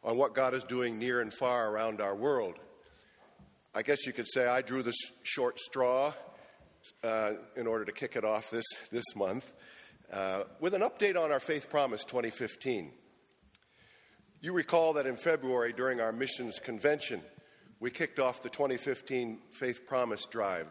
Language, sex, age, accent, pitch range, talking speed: English, male, 50-69, American, 115-140 Hz, 165 wpm